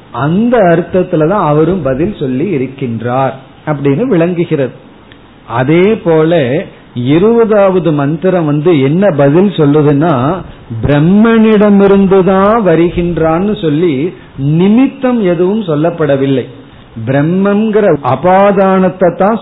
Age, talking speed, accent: 40-59, 75 wpm, native